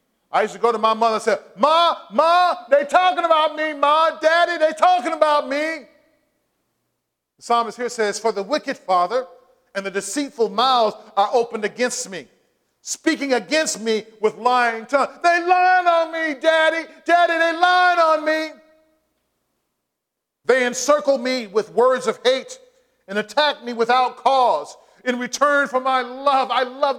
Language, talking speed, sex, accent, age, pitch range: English, 160 wpm, male, American, 40-59, 225-315 Hz